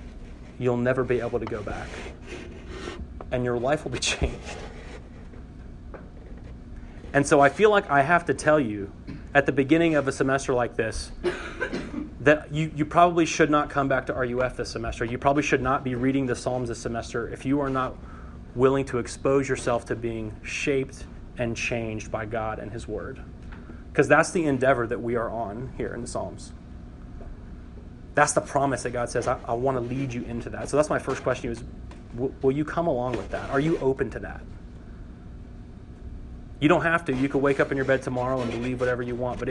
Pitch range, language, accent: 115-140 Hz, English, American